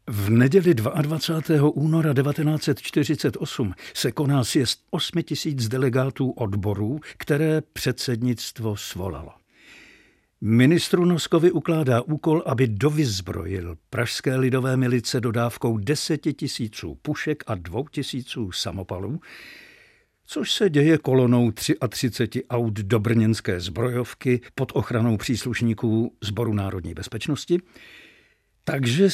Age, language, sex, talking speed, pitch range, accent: 60-79, Czech, male, 100 wpm, 105-135 Hz, native